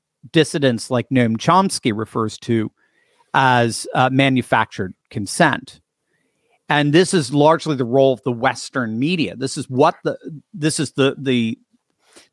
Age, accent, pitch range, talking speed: 50-69, American, 125-165 Hz, 135 wpm